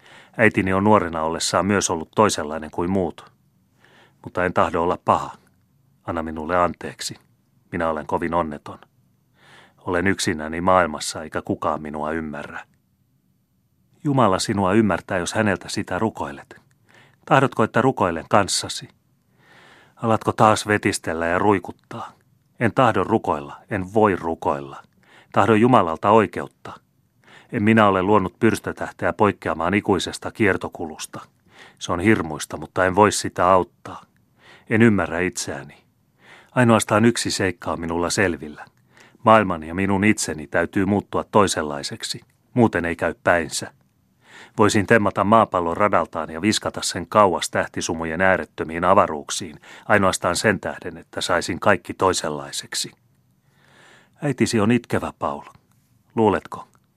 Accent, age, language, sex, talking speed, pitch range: native, 30-49, Finnish, male, 120 wpm, 85-110 Hz